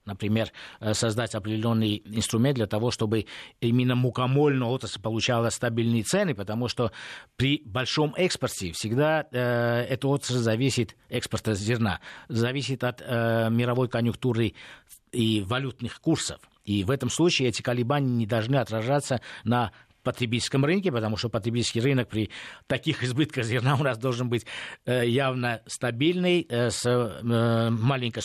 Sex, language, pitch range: male, Russian, 110-135 Hz